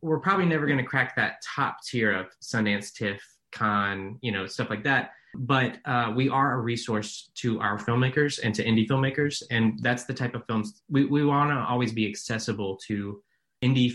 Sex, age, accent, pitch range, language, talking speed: male, 20-39, American, 100-120 Hz, English, 195 wpm